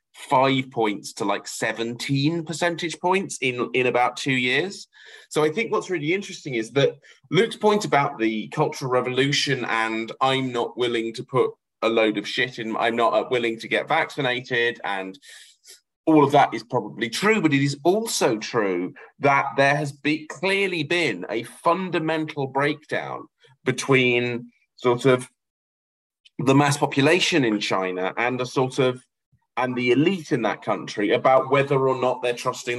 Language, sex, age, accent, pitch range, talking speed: English, male, 30-49, British, 120-155 Hz, 160 wpm